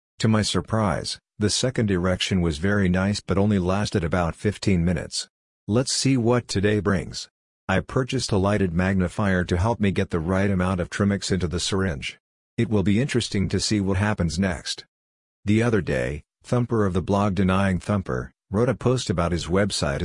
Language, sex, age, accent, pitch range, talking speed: English, male, 50-69, American, 90-105 Hz, 185 wpm